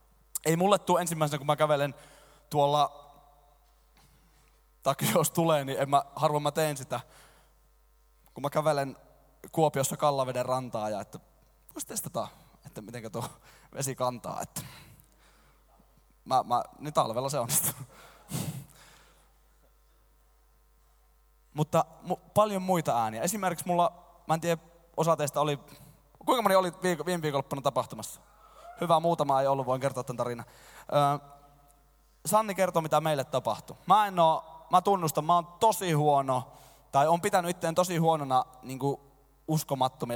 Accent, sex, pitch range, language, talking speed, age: native, male, 130-165 Hz, Finnish, 135 wpm, 20-39